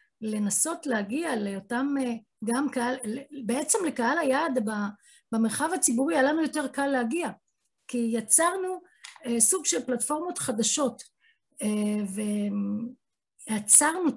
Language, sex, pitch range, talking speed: Hebrew, female, 220-280 Hz, 95 wpm